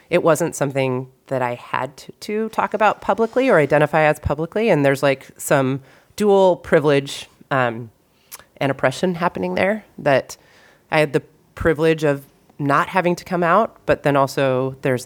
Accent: American